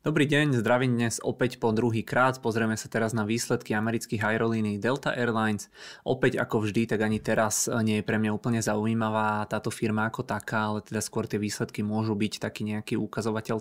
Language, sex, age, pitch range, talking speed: Czech, male, 20-39, 105-115 Hz, 195 wpm